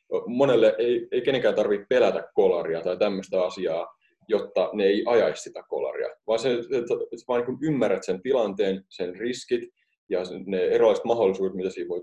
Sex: male